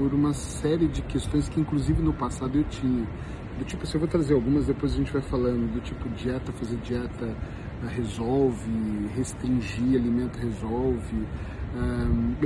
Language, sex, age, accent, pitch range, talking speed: Portuguese, male, 40-59, Brazilian, 120-145 Hz, 160 wpm